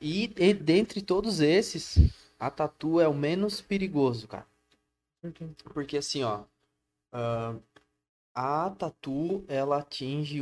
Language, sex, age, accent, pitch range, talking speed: Portuguese, male, 20-39, Brazilian, 115-150 Hz, 110 wpm